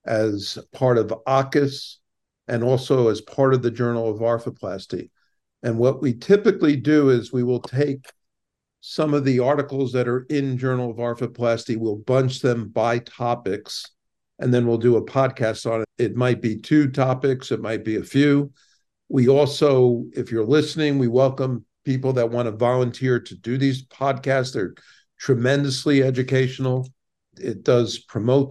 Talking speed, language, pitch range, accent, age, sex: 160 wpm, English, 115-135 Hz, American, 50-69, male